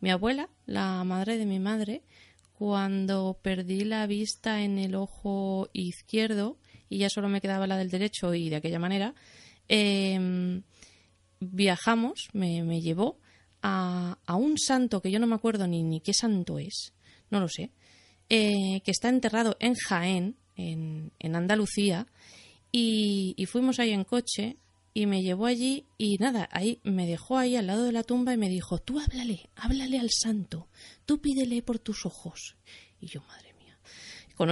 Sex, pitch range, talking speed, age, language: female, 185-240 Hz, 165 wpm, 20-39, Spanish